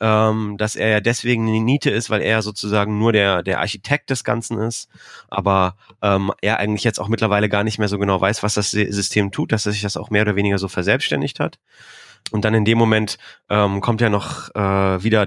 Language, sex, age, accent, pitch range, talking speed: German, male, 20-39, German, 105-120 Hz, 220 wpm